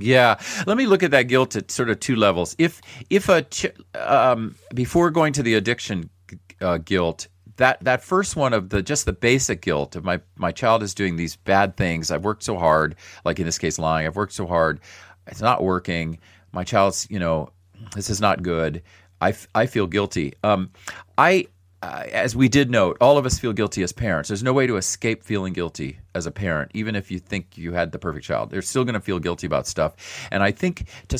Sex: male